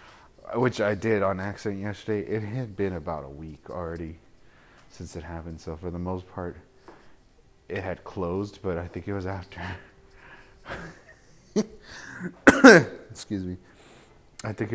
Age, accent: 30-49, American